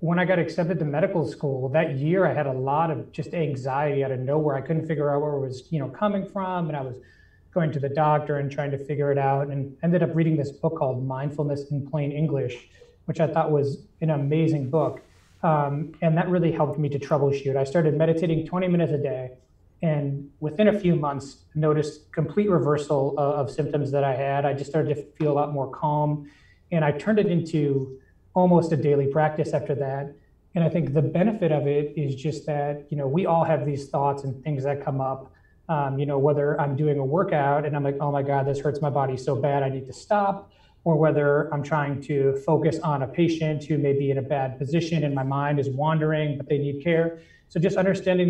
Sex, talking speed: male, 230 wpm